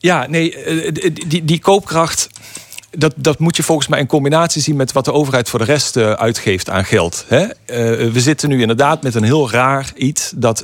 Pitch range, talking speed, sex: 115-150 Hz, 190 wpm, male